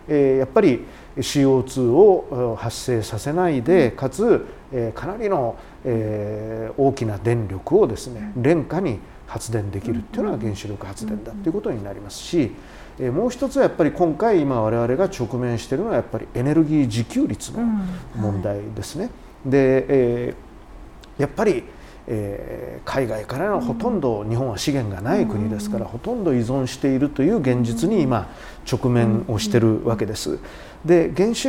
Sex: male